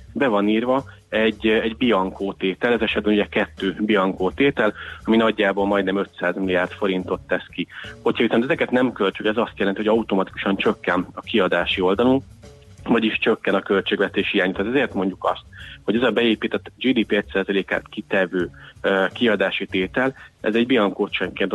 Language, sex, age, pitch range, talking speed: Hungarian, male, 30-49, 95-110 Hz, 160 wpm